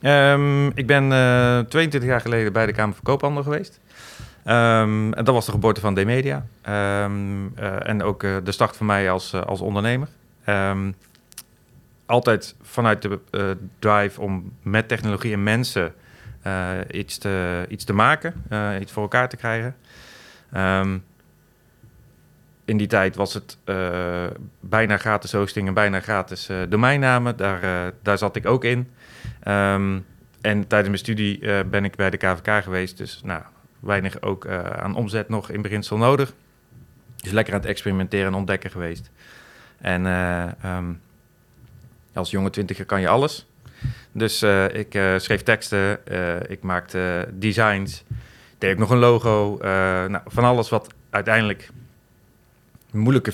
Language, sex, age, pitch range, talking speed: Dutch, male, 40-59, 95-115 Hz, 150 wpm